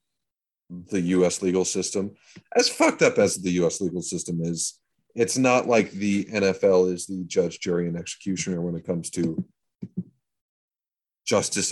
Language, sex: English, male